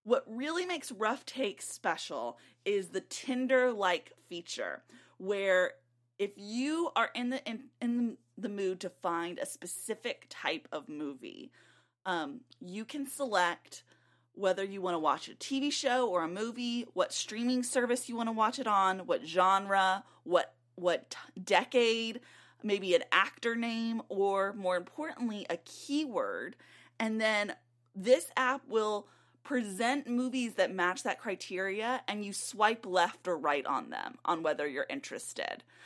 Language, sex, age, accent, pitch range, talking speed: English, female, 20-39, American, 190-255 Hz, 150 wpm